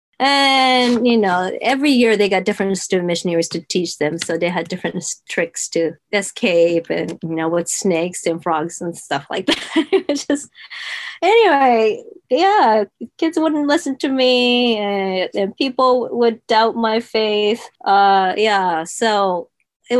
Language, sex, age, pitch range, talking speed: English, female, 20-39, 170-240 Hz, 155 wpm